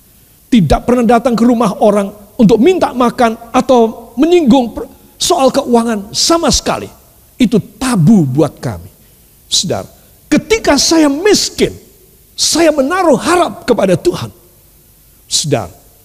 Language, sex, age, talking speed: Indonesian, male, 50-69, 110 wpm